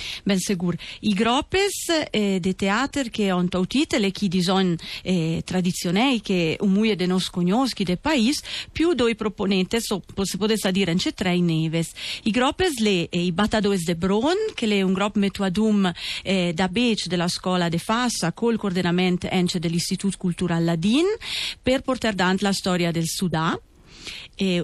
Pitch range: 180-225 Hz